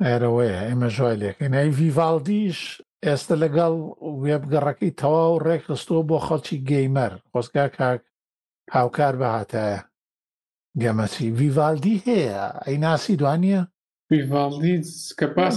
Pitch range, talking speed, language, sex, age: 130-165 Hz, 45 wpm, Arabic, male, 50-69